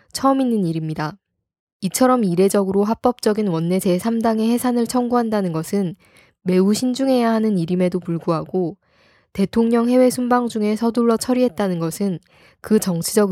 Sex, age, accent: female, 10-29, native